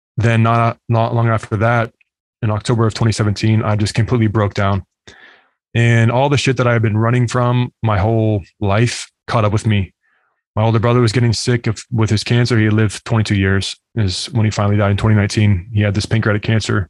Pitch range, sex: 105-120 Hz, male